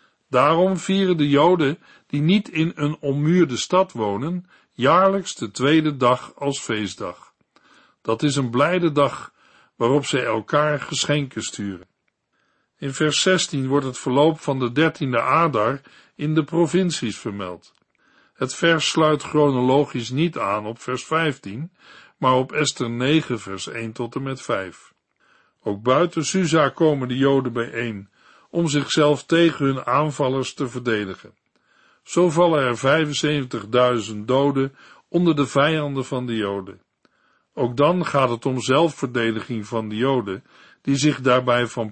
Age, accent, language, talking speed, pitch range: 60-79, Dutch, Dutch, 140 wpm, 125-165 Hz